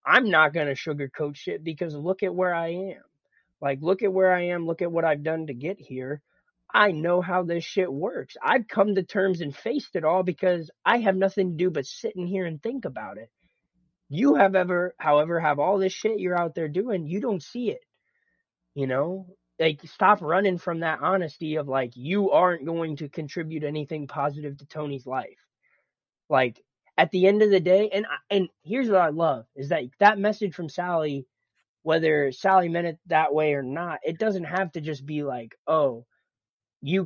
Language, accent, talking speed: English, American, 205 wpm